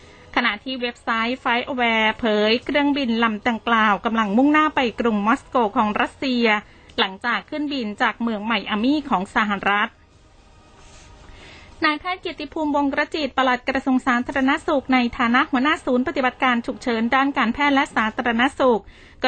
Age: 20-39